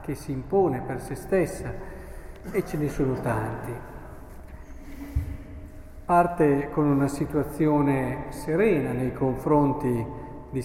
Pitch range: 130-170 Hz